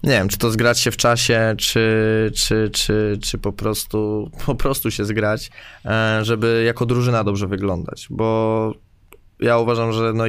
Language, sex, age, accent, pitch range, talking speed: Polish, male, 20-39, native, 105-120 Hz, 165 wpm